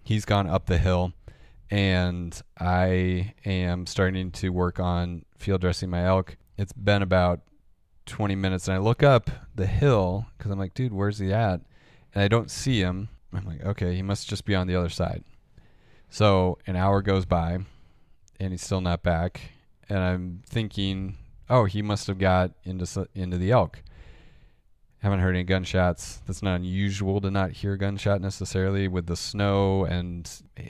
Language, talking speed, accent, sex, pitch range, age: English, 175 wpm, American, male, 90-100 Hz, 30-49